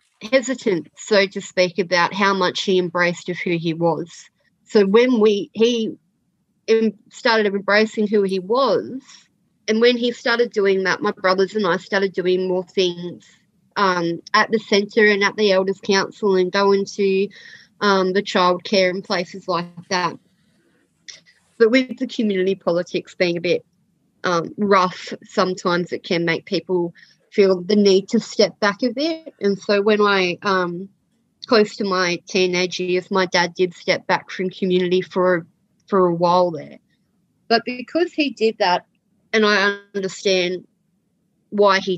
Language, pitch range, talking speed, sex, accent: English, 180-215 Hz, 155 wpm, female, Australian